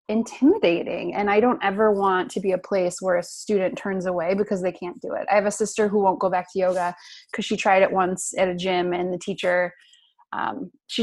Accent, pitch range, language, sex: American, 185-215 Hz, English, female